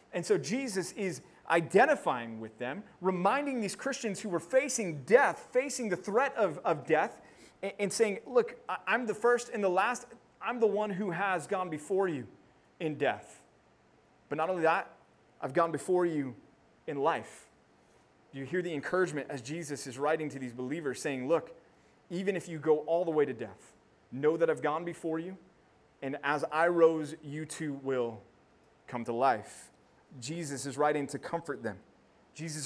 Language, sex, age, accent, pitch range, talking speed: English, male, 30-49, American, 150-190 Hz, 175 wpm